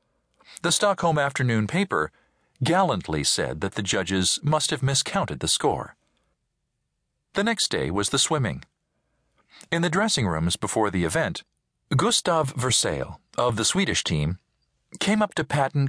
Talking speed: 140 wpm